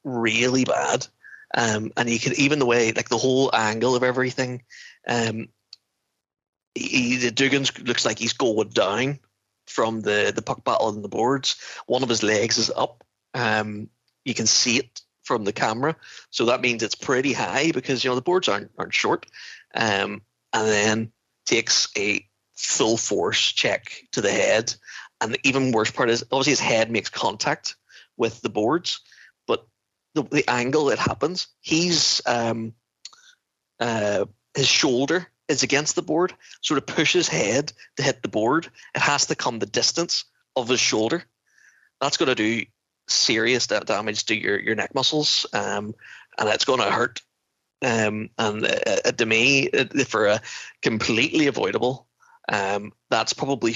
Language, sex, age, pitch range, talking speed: English, male, 30-49, 110-135 Hz, 160 wpm